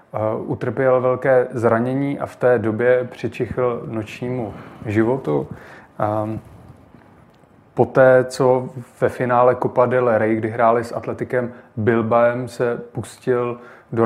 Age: 30-49